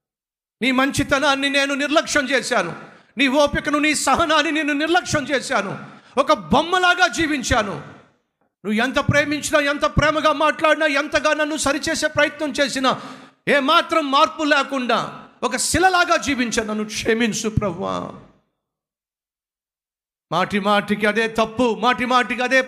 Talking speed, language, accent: 70 wpm, Telugu, native